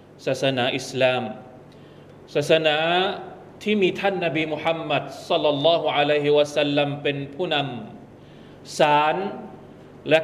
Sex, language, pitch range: male, Thai, 145-170 Hz